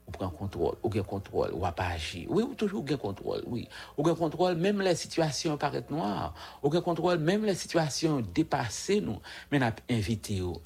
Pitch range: 100-155 Hz